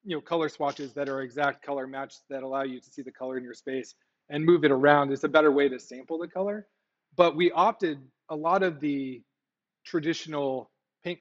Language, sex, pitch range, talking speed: English, male, 135-165 Hz, 215 wpm